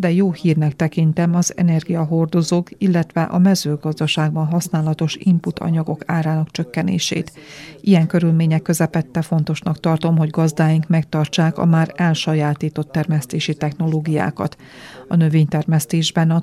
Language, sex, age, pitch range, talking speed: Hungarian, female, 40-59, 155-170 Hz, 110 wpm